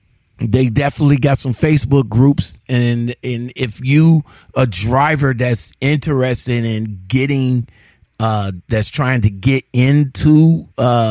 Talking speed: 125 wpm